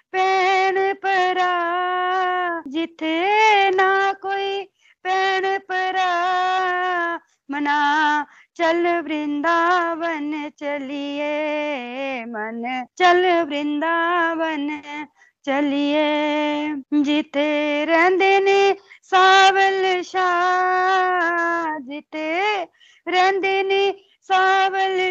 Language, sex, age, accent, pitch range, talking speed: Hindi, female, 30-49, native, 295-370 Hz, 55 wpm